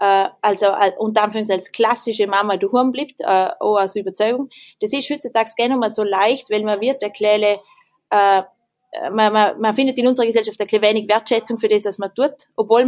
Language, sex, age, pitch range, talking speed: German, female, 20-39, 205-250 Hz, 215 wpm